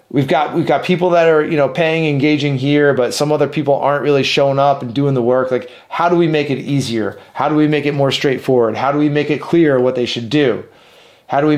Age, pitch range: 30-49, 125-150 Hz